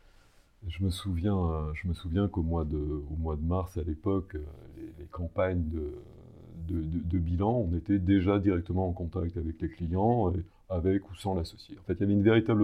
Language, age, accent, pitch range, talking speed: French, 40-59, French, 85-100 Hz, 205 wpm